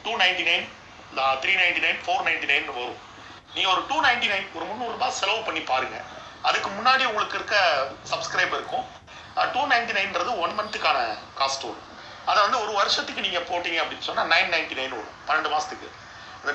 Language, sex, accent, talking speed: Tamil, male, native, 130 wpm